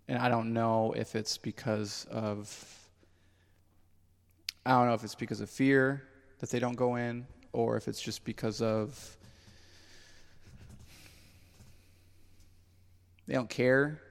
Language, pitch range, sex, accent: English, 90-120 Hz, male, American